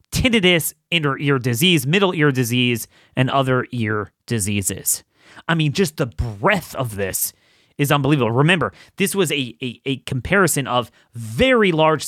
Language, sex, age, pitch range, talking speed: English, male, 30-49, 120-155 Hz, 150 wpm